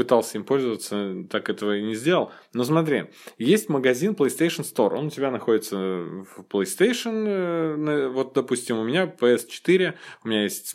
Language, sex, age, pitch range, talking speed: Russian, male, 20-39, 110-140 Hz, 155 wpm